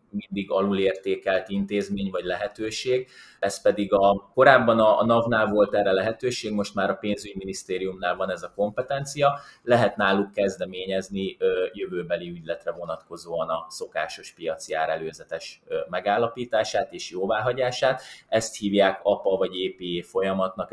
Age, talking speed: 20-39, 120 wpm